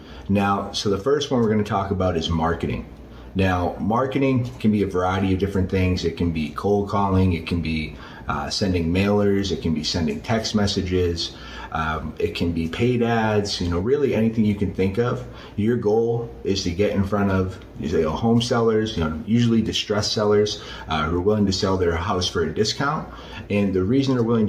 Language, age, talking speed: English, 30-49, 200 wpm